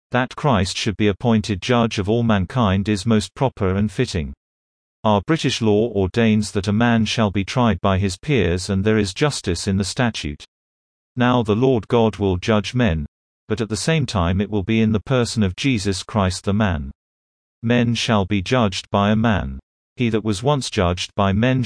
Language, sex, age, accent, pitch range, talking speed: English, male, 40-59, British, 95-115 Hz, 195 wpm